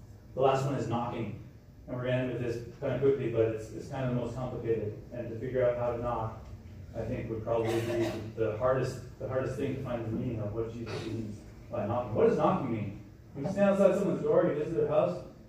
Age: 30-49